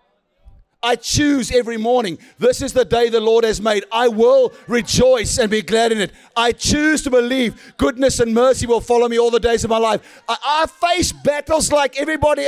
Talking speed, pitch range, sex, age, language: 200 wpm, 240-295 Hz, male, 40-59, English